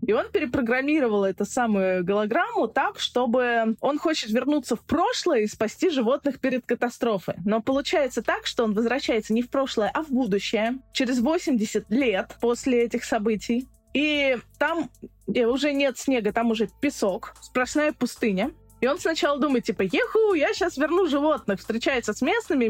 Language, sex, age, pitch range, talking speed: Russian, female, 20-39, 225-310 Hz, 155 wpm